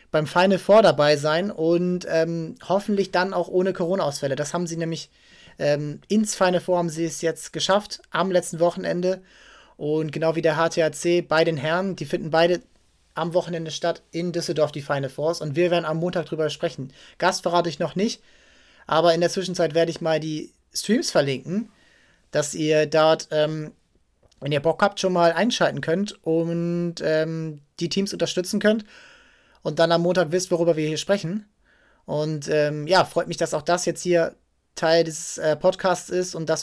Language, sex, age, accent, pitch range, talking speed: German, male, 30-49, German, 155-180 Hz, 185 wpm